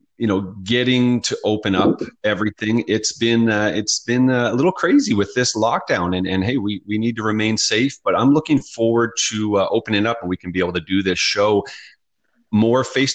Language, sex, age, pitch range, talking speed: English, male, 30-49, 95-120 Hz, 215 wpm